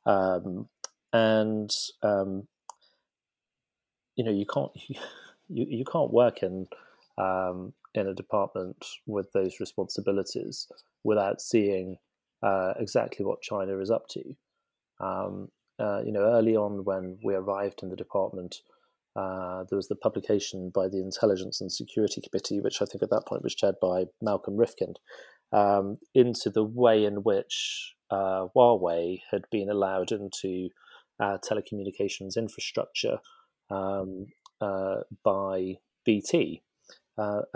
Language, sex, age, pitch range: English, male, 30-49, 95-115 Hz